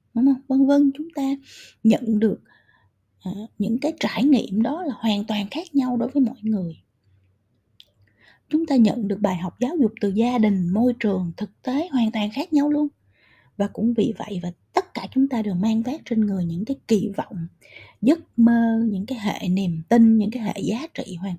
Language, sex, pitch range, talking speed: Vietnamese, female, 185-260 Hz, 200 wpm